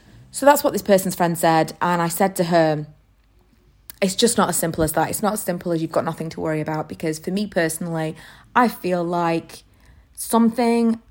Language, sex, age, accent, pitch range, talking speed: English, female, 30-49, British, 160-210 Hz, 205 wpm